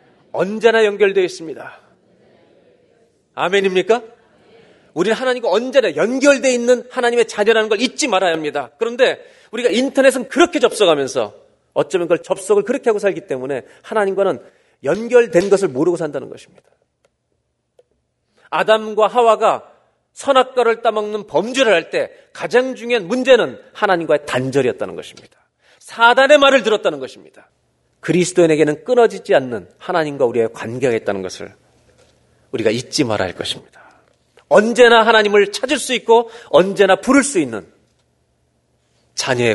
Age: 40-59